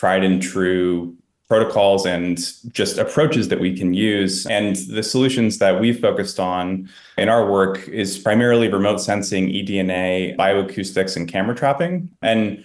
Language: English